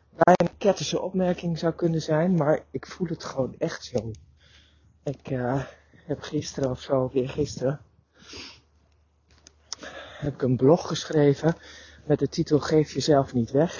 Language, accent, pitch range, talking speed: Dutch, Dutch, 115-145 Hz, 150 wpm